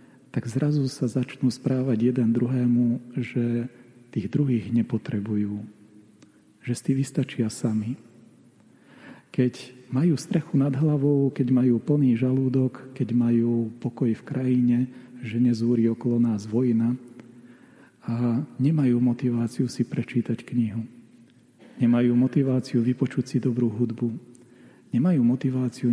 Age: 40-59